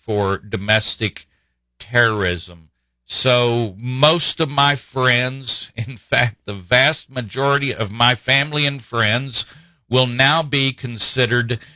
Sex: male